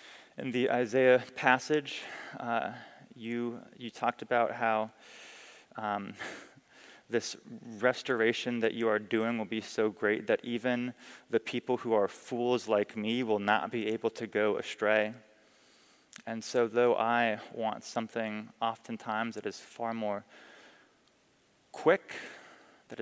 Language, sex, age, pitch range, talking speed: English, male, 20-39, 110-120 Hz, 130 wpm